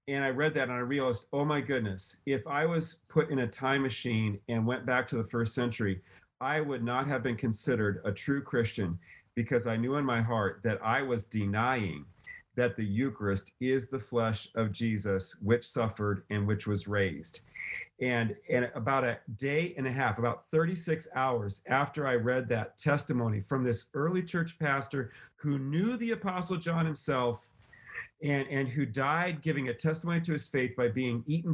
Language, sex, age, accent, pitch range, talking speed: English, male, 40-59, American, 110-140 Hz, 185 wpm